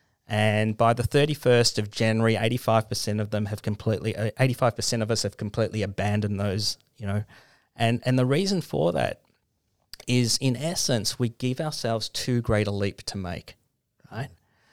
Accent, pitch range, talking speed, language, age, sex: Australian, 110-125 Hz, 165 wpm, English, 40-59, male